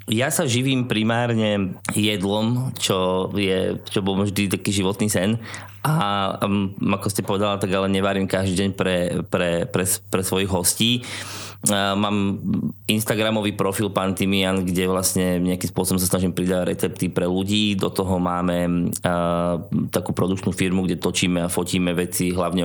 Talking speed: 150 wpm